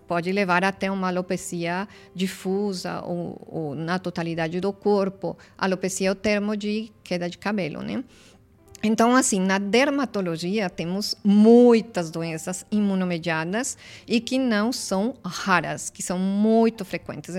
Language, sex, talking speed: Portuguese, female, 130 wpm